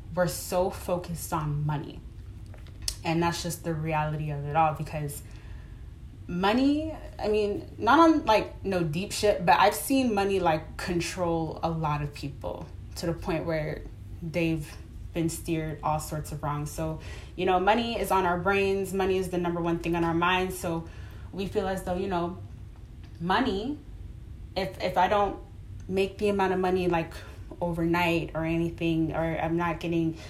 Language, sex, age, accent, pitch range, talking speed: English, female, 20-39, American, 150-190 Hz, 175 wpm